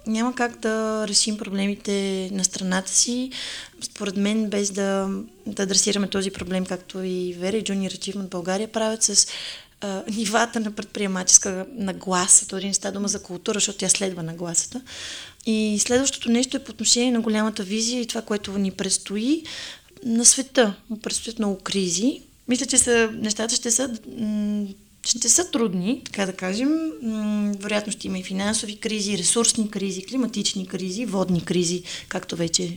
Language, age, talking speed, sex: Bulgarian, 20-39, 155 wpm, female